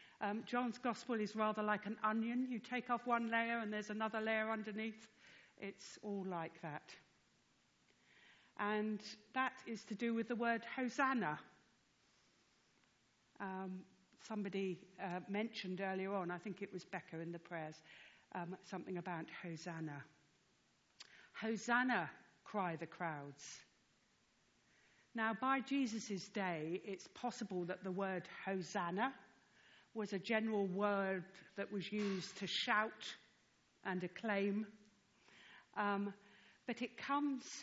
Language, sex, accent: English, female, British